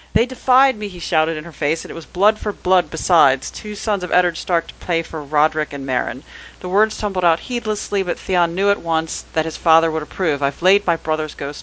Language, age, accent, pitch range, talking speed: English, 40-59, American, 155-200 Hz, 240 wpm